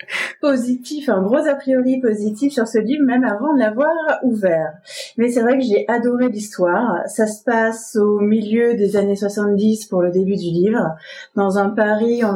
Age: 30-49